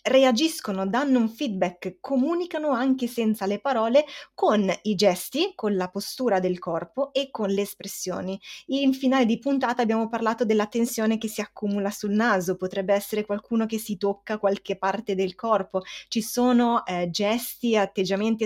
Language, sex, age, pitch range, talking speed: Italian, female, 20-39, 190-240 Hz, 160 wpm